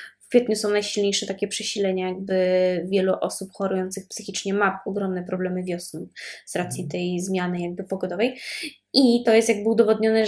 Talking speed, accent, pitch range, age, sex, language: 150 wpm, native, 195-240 Hz, 20-39, female, Polish